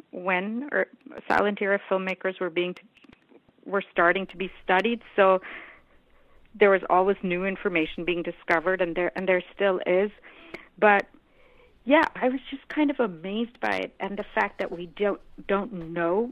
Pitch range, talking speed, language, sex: 175-230 Hz, 165 wpm, English, female